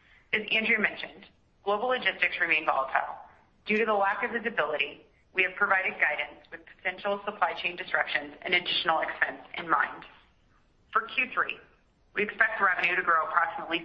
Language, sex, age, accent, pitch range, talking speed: English, female, 30-49, American, 155-200 Hz, 150 wpm